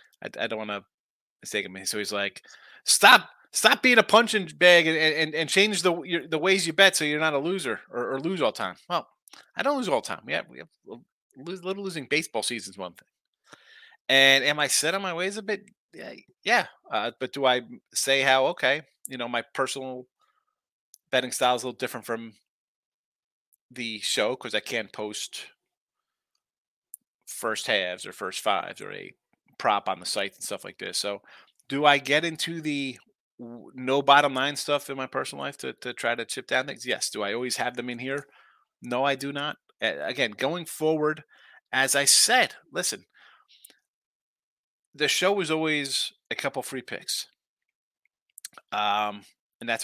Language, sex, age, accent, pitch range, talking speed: English, male, 30-49, American, 125-165 Hz, 185 wpm